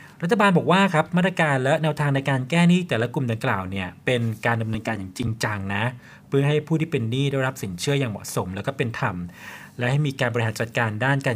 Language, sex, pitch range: Thai, male, 115-140 Hz